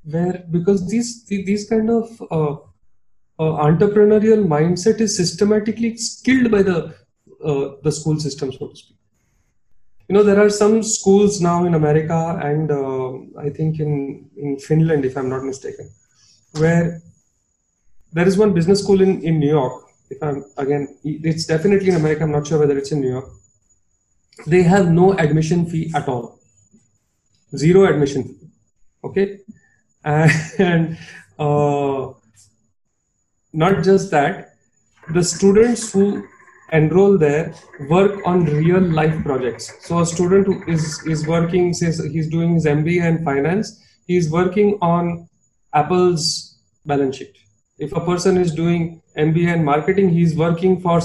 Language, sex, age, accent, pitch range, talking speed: English, male, 30-49, Indian, 145-185 Hz, 145 wpm